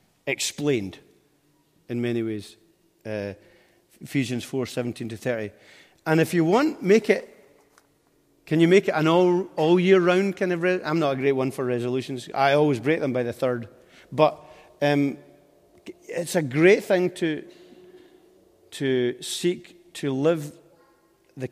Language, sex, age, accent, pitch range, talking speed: English, male, 40-59, British, 130-165 Hz, 150 wpm